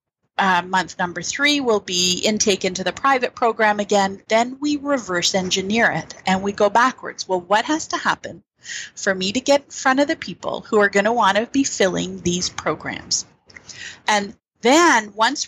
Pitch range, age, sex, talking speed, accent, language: 185-235 Hz, 30-49, female, 180 wpm, American, English